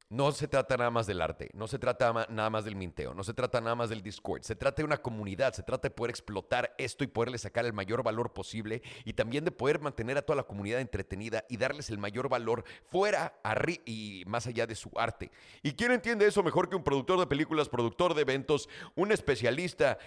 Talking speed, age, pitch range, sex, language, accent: 225 wpm, 40-59, 105-145 Hz, male, Spanish, Mexican